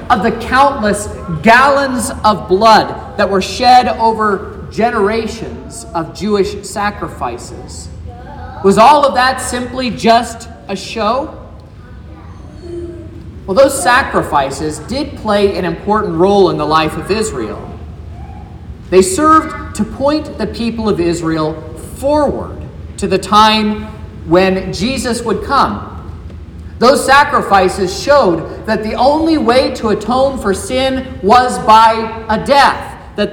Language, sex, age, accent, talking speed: English, male, 40-59, American, 120 wpm